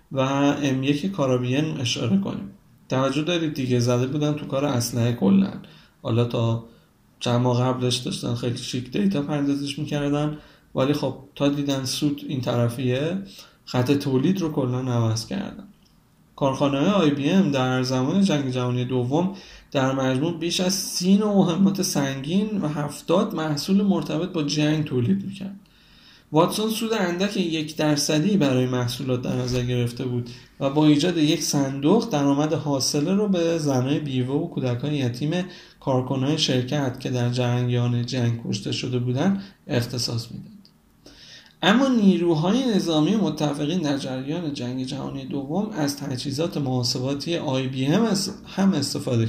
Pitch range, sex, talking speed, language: 130-170 Hz, male, 140 wpm, Persian